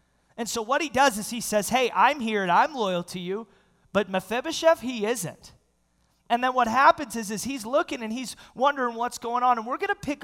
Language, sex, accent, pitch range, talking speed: English, male, American, 150-230 Hz, 230 wpm